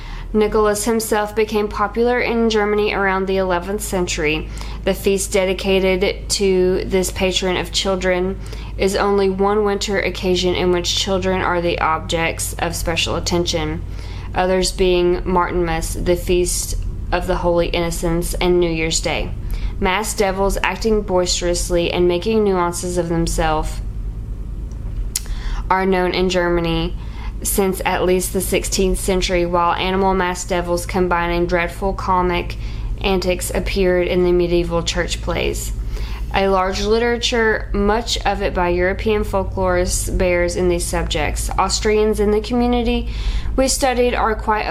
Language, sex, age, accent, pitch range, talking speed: English, female, 20-39, American, 175-195 Hz, 135 wpm